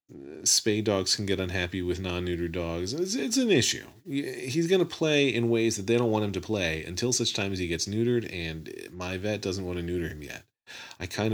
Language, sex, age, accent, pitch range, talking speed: English, male, 40-59, American, 85-115 Hz, 230 wpm